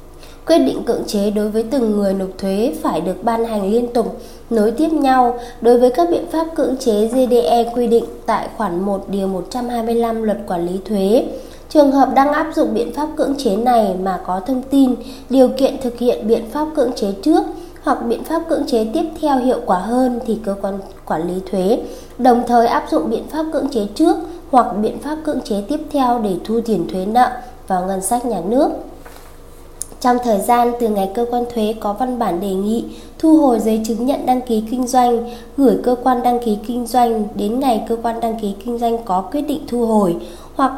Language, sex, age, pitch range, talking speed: Vietnamese, female, 20-39, 210-265 Hz, 210 wpm